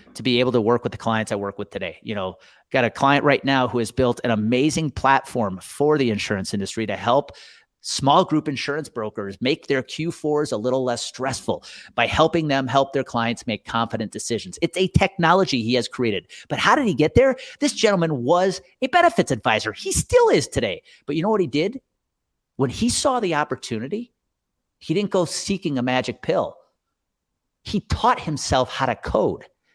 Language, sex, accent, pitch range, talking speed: English, male, American, 115-185 Hz, 195 wpm